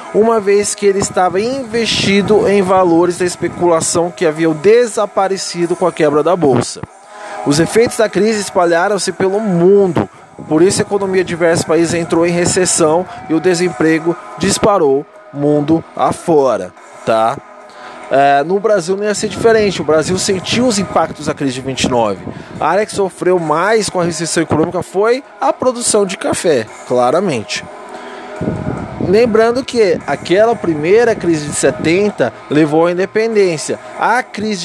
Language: Portuguese